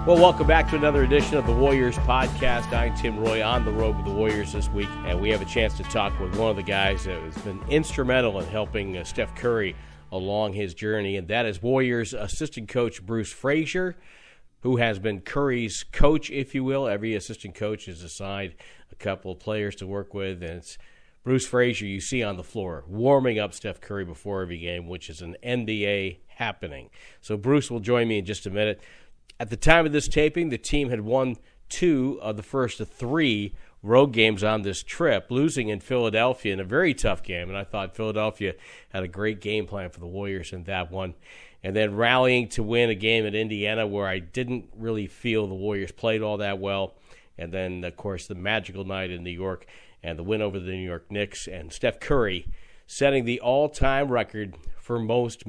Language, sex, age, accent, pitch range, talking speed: English, male, 40-59, American, 95-120 Hz, 210 wpm